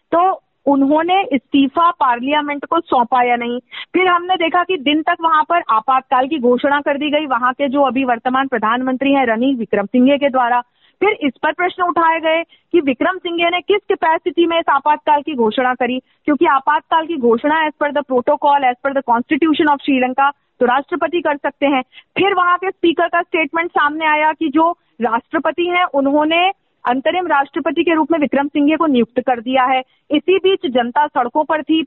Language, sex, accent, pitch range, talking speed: Hindi, female, native, 270-335 Hz, 190 wpm